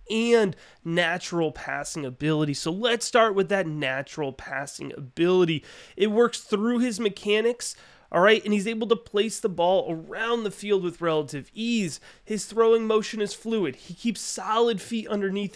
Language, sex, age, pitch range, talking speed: English, male, 30-49, 170-220 Hz, 160 wpm